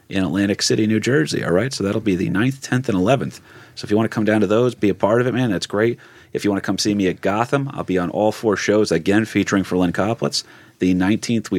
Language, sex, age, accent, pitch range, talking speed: English, male, 30-49, American, 90-125 Hz, 285 wpm